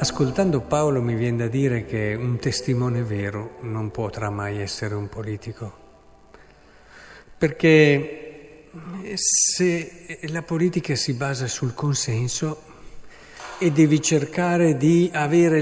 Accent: native